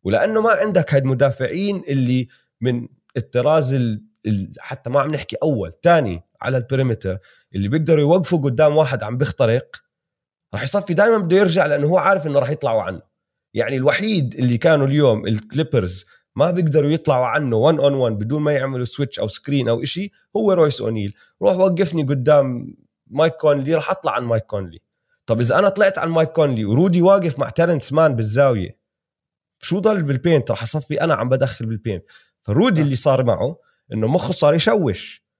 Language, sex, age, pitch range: Arabic, male, 30-49, 120-165 Hz